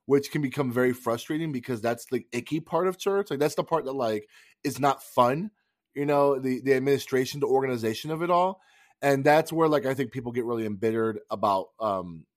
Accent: American